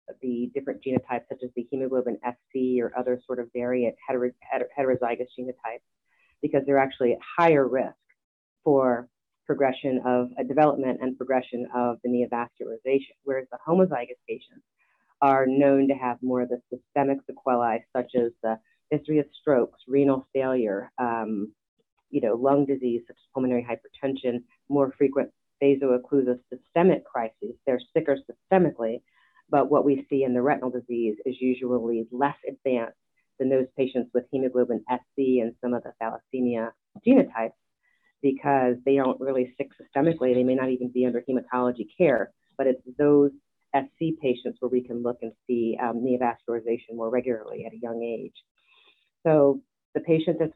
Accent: American